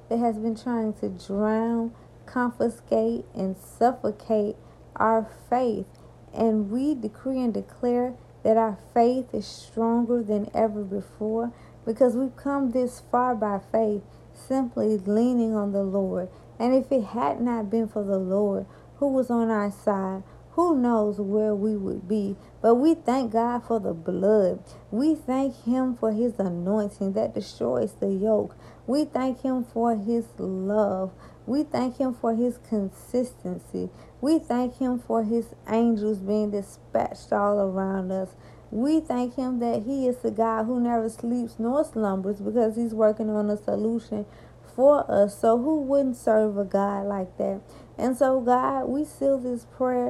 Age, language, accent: 40-59, English, American